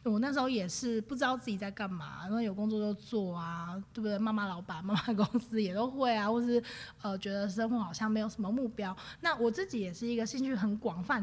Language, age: Chinese, 20-39